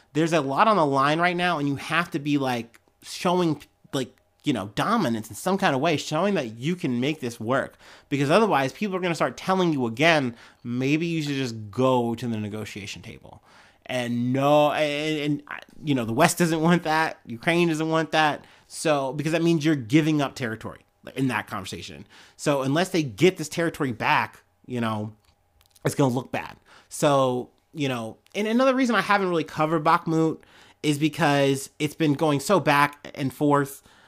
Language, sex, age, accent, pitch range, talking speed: English, male, 30-49, American, 130-165 Hz, 195 wpm